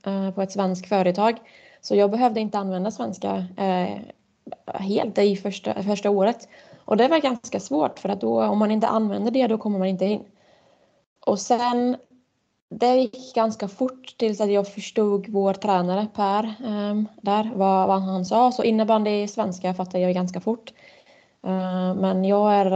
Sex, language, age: female, Swedish, 20-39